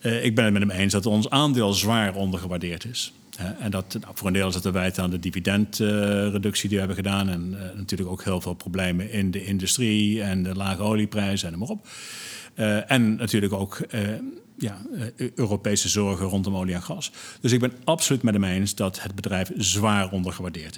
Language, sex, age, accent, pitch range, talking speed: Dutch, male, 50-69, Dutch, 100-115 Hz, 210 wpm